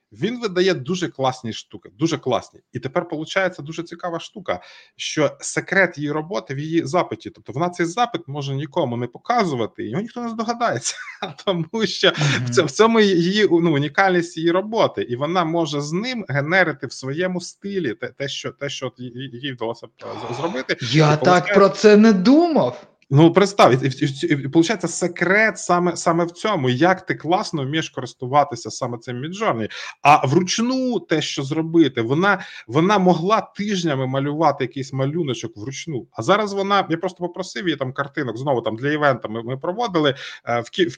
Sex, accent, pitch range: male, native, 140-185 Hz